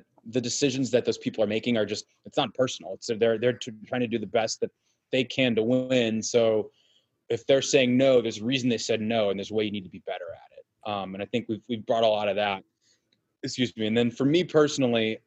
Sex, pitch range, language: male, 110-145 Hz, English